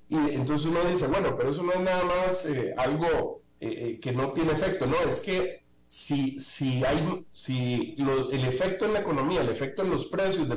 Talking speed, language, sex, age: 205 wpm, Spanish, male, 50-69